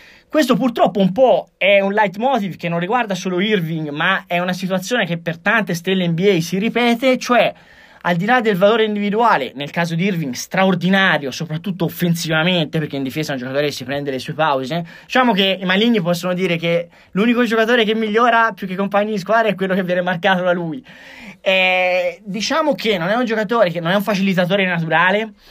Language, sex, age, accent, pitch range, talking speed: Italian, male, 20-39, native, 160-210 Hz, 200 wpm